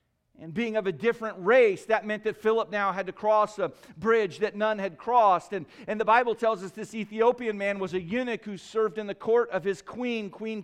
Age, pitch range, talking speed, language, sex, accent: 40-59, 140-235 Hz, 230 wpm, English, male, American